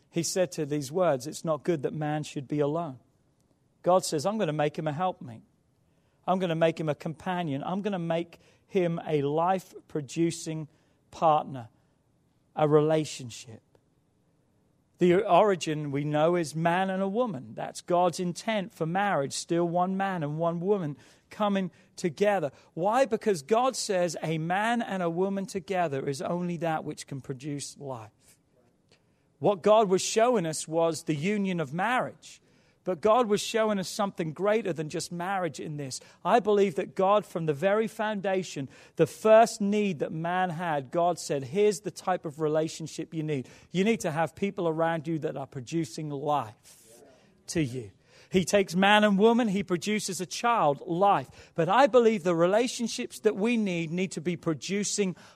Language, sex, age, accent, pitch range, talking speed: English, male, 40-59, British, 155-200 Hz, 170 wpm